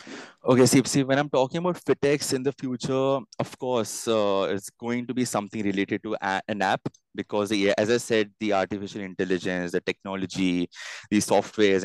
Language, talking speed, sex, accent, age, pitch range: Hindi, 180 wpm, male, native, 20-39, 100-120 Hz